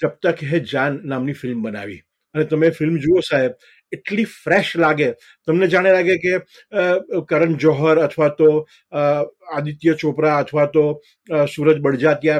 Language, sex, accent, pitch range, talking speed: Gujarati, male, native, 150-200 Hz, 140 wpm